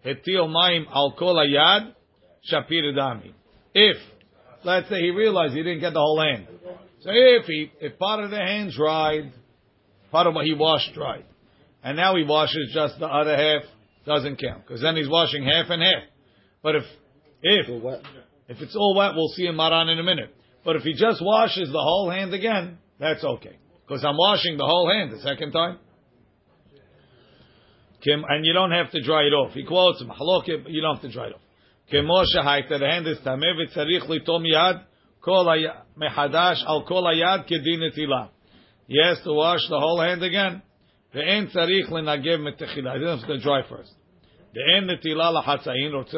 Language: English